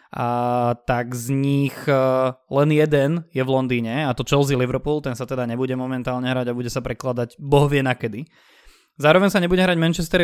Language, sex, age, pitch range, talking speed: Slovak, male, 20-39, 125-145 Hz, 175 wpm